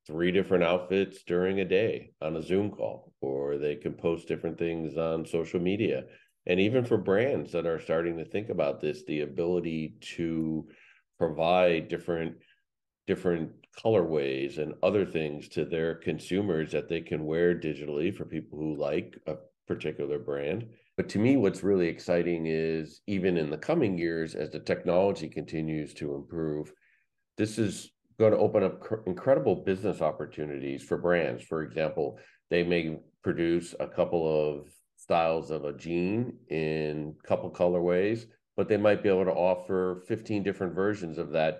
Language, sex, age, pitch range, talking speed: English, male, 50-69, 80-90 Hz, 165 wpm